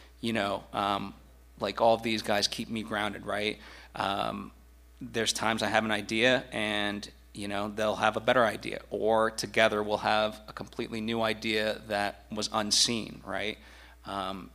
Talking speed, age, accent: 160 wpm, 30-49, American